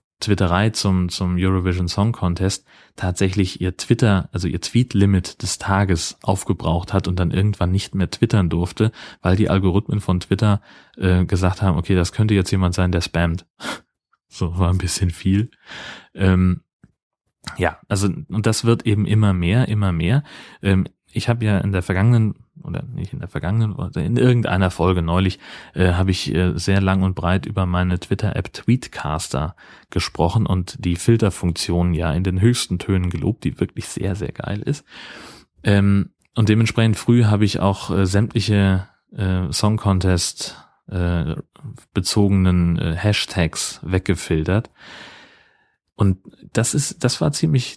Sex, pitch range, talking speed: male, 90-110 Hz, 155 wpm